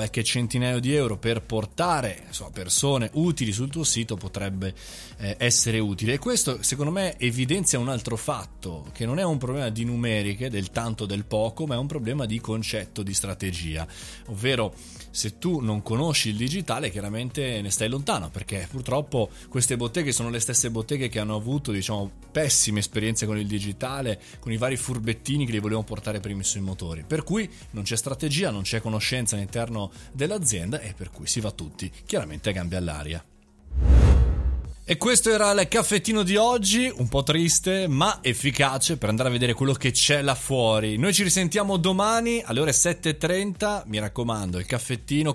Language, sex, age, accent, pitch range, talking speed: Italian, male, 20-39, native, 105-145 Hz, 180 wpm